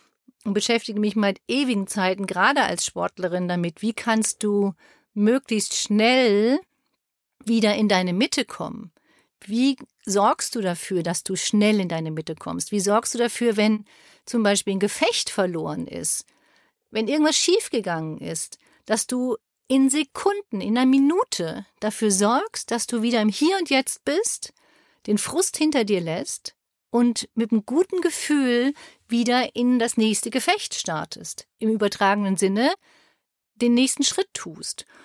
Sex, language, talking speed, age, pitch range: female, German, 145 wpm, 40-59, 200-265 Hz